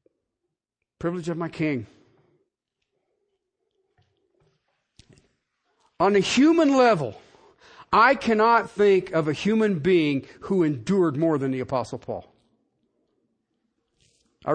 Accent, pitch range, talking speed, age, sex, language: American, 130-210 Hz, 95 wpm, 50-69, male, English